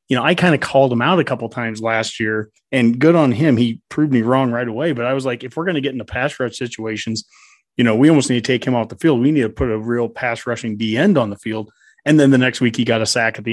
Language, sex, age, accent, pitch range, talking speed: English, male, 30-49, American, 120-165 Hz, 315 wpm